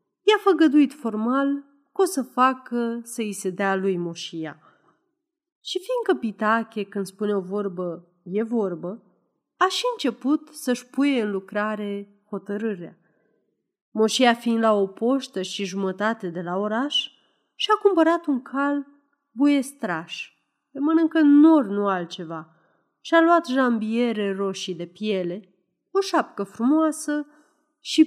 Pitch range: 195-295 Hz